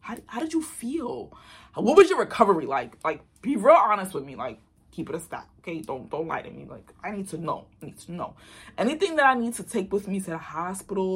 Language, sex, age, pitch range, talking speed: English, female, 20-39, 175-265 Hz, 255 wpm